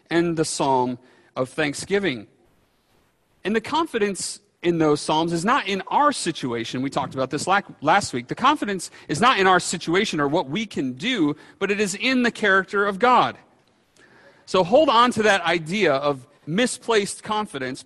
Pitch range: 145-200 Hz